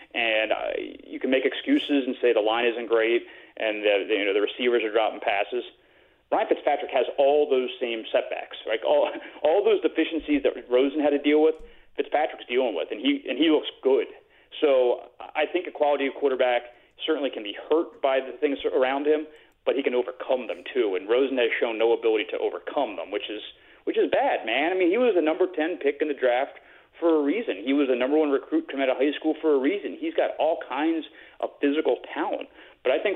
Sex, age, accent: male, 30-49, American